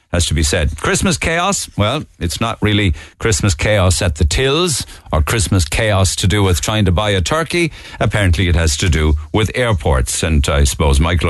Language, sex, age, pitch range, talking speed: English, male, 60-79, 80-115 Hz, 195 wpm